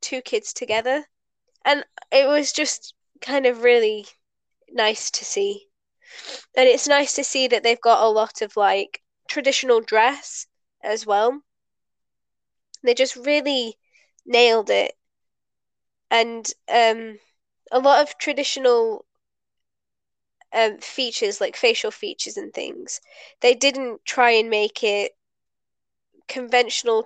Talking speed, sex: 120 wpm, female